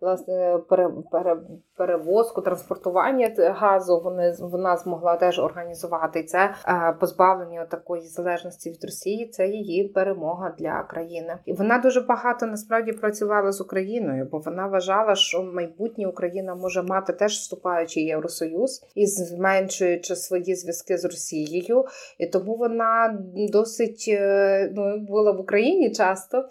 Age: 20-39